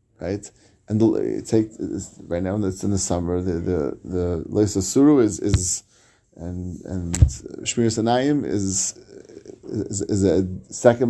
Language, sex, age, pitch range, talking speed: English, male, 30-49, 95-115 Hz, 130 wpm